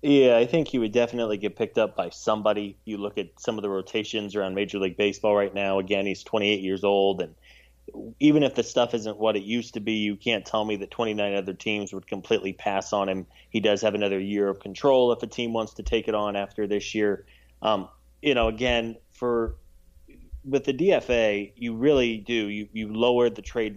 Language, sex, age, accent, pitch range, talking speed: English, male, 20-39, American, 100-120 Hz, 220 wpm